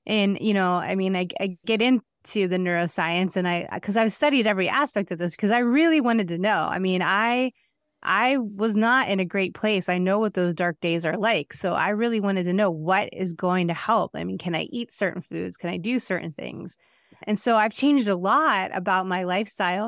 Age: 30-49